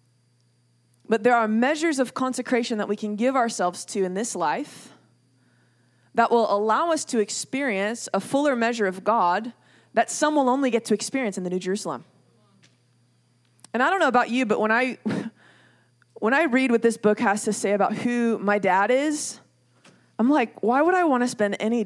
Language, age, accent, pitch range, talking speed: English, 20-39, American, 170-235 Hz, 190 wpm